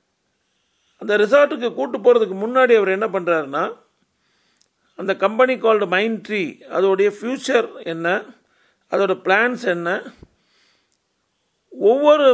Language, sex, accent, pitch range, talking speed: Tamil, male, native, 185-245 Hz, 95 wpm